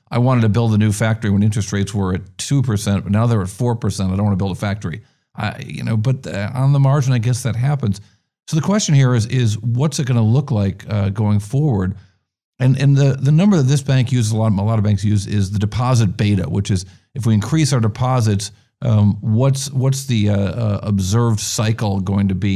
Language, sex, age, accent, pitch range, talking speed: English, male, 50-69, American, 100-125 Hz, 240 wpm